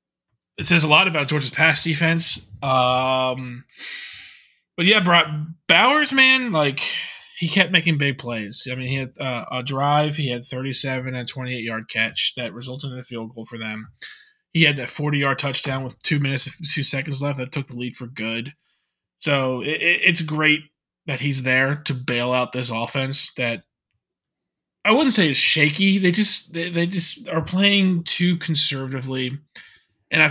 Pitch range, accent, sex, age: 130-165 Hz, American, male, 20-39